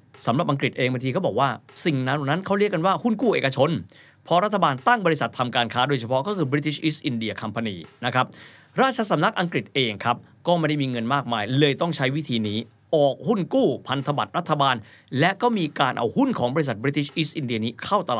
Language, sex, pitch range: Thai, male, 120-170 Hz